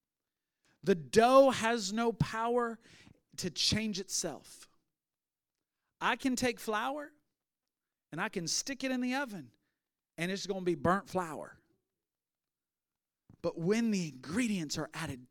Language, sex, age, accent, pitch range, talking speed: English, male, 40-59, American, 175-220 Hz, 130 wpm